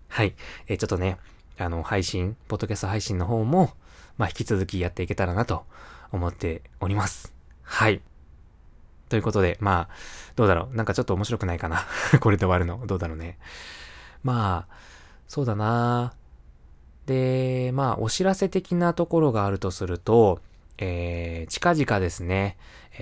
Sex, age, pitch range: male, 20-39, 90-110 Hz